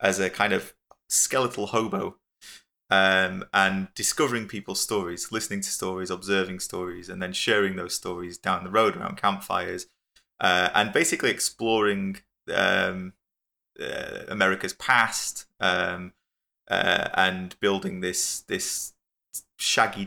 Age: 20-39